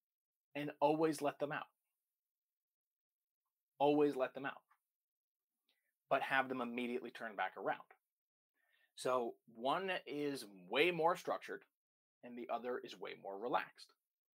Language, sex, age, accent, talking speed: English, male, 30-49, American, 120 wpm